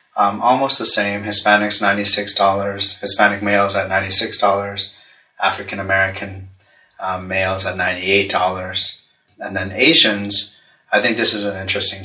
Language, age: English, 30-49